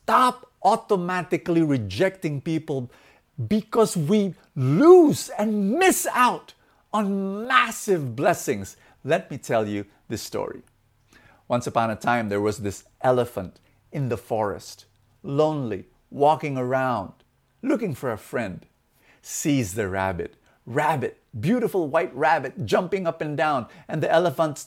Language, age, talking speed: English, 50-69, 125 wpm